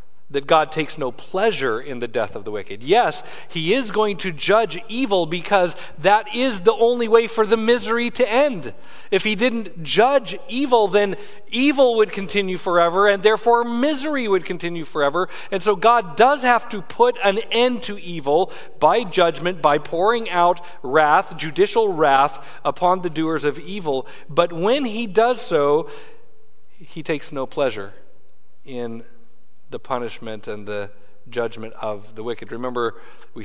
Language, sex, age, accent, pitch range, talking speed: English, male, 40-59, American, 155-235 Hz, 160 wpm